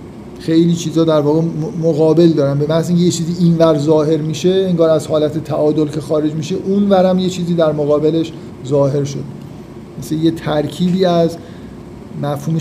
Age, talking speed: 50-69, 155 wpm